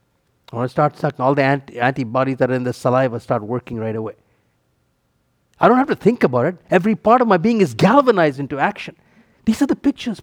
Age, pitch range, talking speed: 50-69, 135-200 Hz, 215 wpm